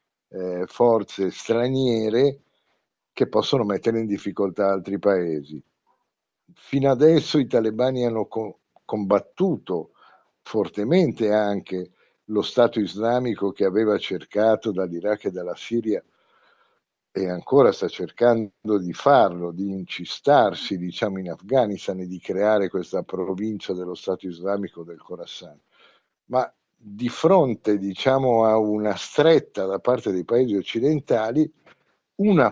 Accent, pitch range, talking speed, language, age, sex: native, 95-115 Hz, 115 wpm, Italian, 50-69, male